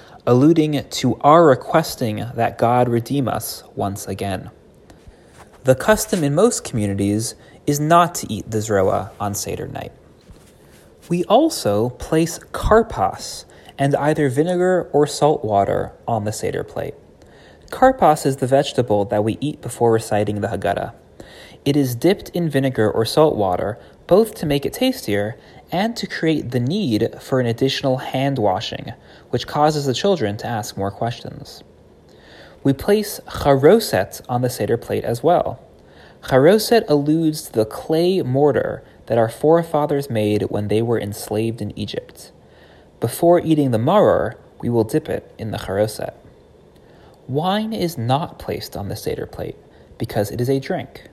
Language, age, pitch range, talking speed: English, 20-39, 105-155 Hz, 150 wpm